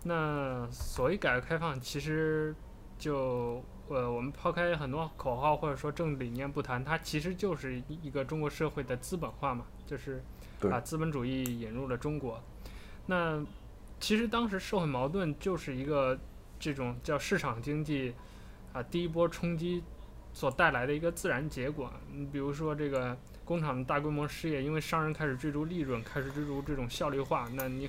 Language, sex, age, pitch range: Chinese, male, 20-39, 130-165 Hz